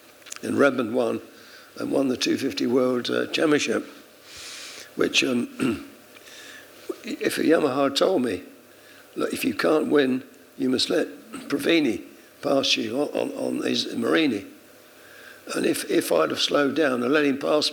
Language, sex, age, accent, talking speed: English, male, 60-79, British, 150 wpm